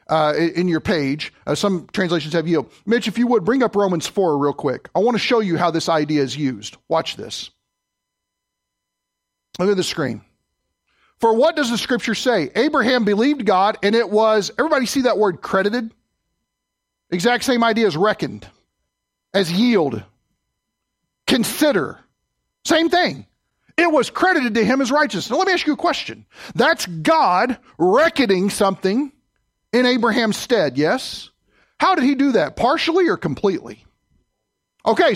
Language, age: English, 40-59